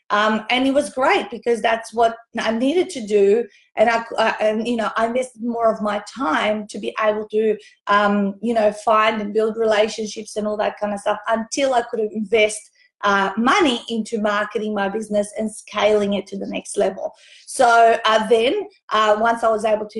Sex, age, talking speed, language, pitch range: female, 30-49, 200 wpm, English, 210-240 Hz